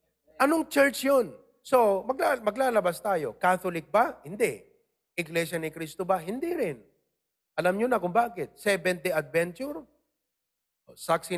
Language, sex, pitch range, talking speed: English, male, 170-245 Hz, 130 wpm